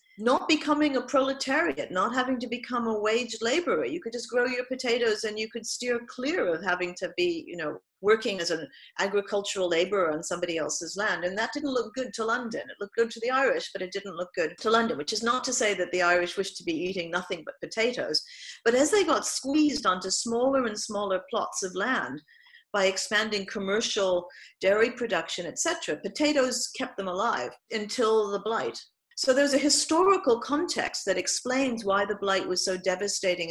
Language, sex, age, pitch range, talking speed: English, female, 50-69, 195-260 Hz, 195 wpm